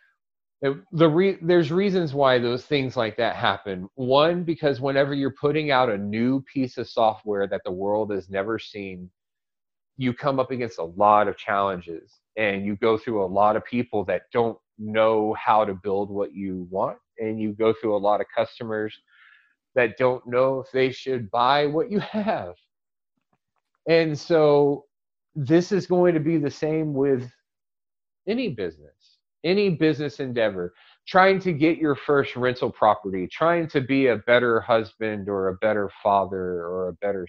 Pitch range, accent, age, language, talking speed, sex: 105-145 Hz, American, 30-49, English, 165 wpm, male